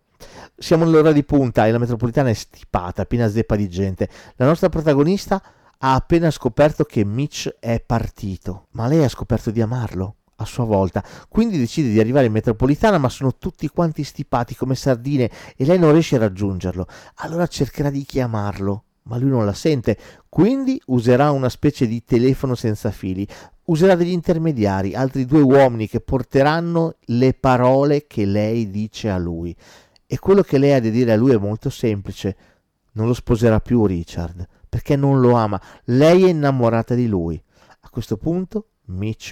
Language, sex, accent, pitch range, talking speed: Italian, male, native, 100-140 Hz, 170 wpm